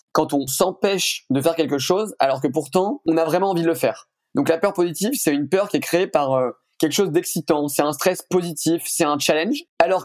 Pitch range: 150-185 Hz